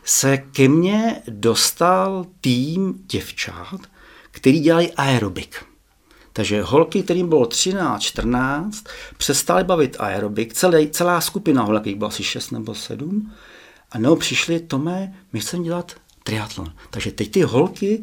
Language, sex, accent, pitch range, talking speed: Czech, male, native, 100-150 Hz, 130 wpm